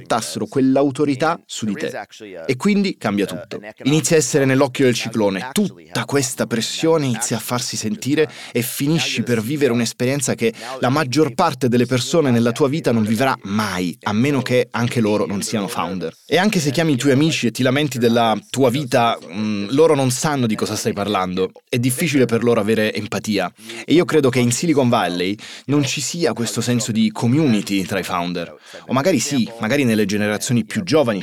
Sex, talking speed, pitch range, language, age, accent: male, 190 wpm, 115-150 Hz, Italian, 20-39, native